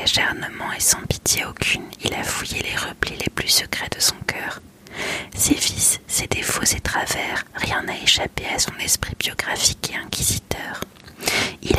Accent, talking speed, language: French, 160 wpm, French